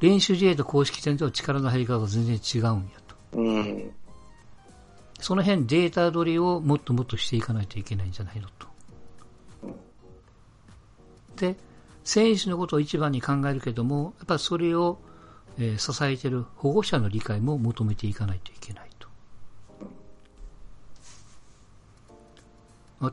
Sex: male